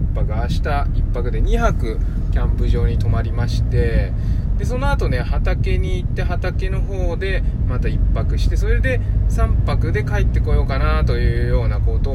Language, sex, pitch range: Japanese, male, 85-105 Hz